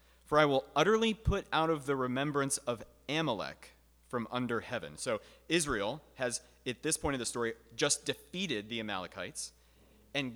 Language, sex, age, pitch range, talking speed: English, male, 30-49, 115-155 Hz, 160 wpm